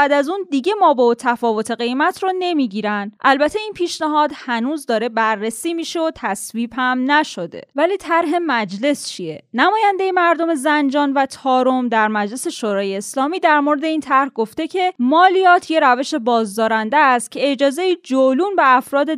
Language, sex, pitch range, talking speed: Persian, female, 235-315 Hz, 155 wpm